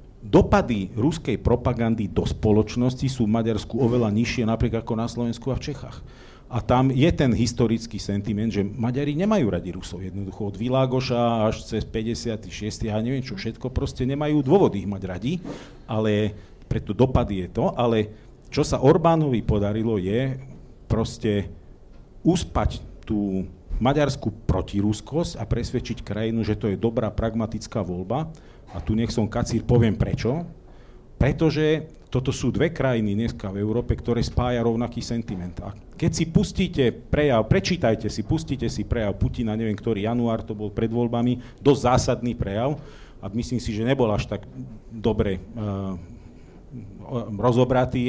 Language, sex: Slovak, male